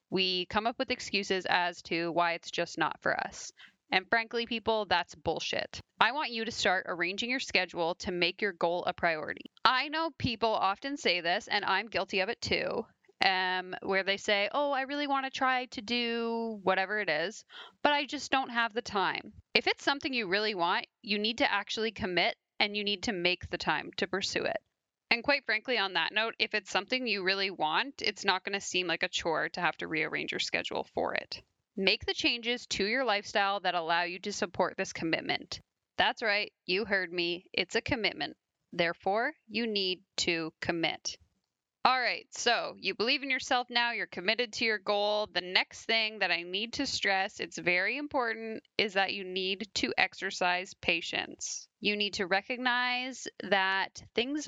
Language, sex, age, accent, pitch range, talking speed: English, female, 20-39, American, 185-240 Hz, 195 wpm